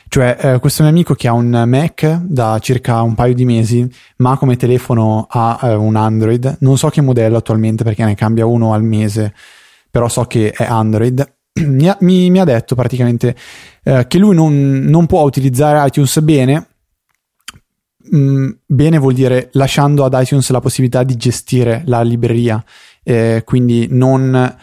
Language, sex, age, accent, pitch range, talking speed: Italian, male, 20-39, native, 115-135 Hz, 165 wpm